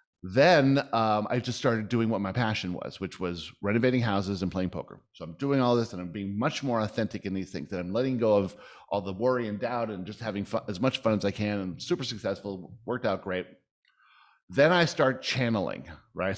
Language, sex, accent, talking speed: English, male, American, 220 wpm